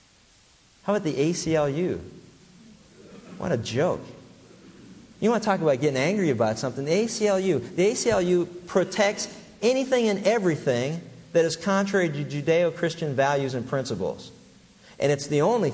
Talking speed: 135 wpm